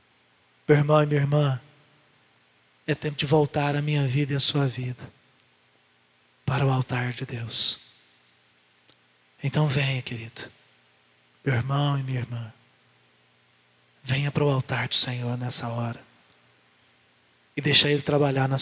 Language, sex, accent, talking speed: Portuguese, male, Brazilian, 135 wpm